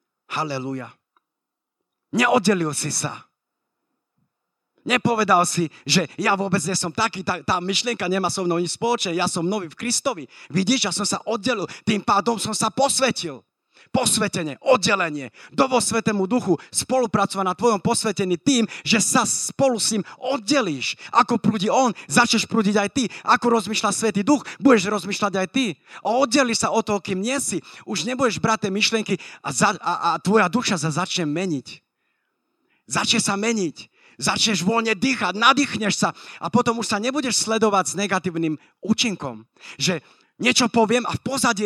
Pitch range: 185-245 Hz